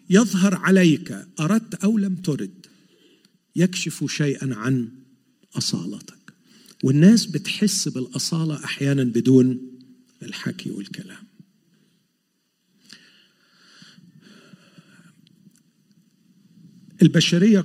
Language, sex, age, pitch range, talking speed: Arabic, male, 50-69, 140-195 Hz, 60 wpm